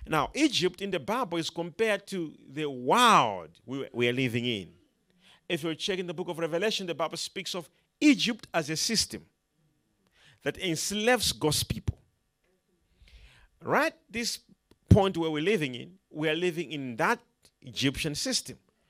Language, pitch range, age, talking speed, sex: English, 130-190 Hz, 40-59, 150 wpm, male